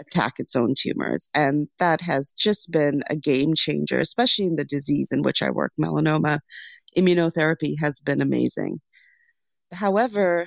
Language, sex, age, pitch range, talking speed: English, female, 30-49, 165-210 Hz, 150 wpm